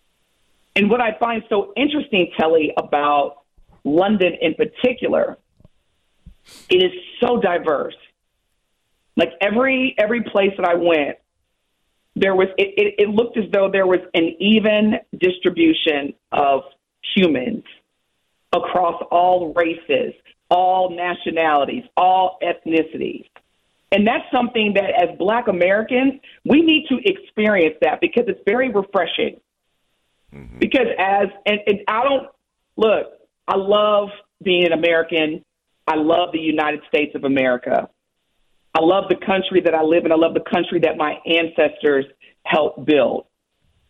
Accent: American